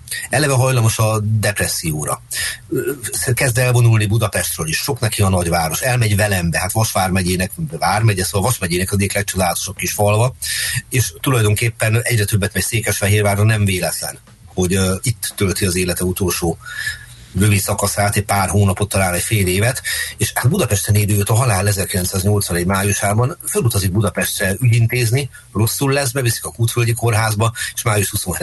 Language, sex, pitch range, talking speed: Hungarian, male, 95-115 Hz, 140 wpm